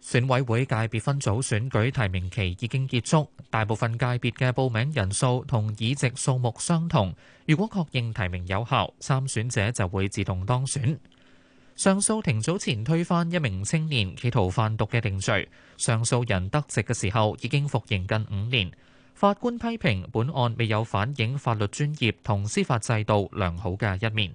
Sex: male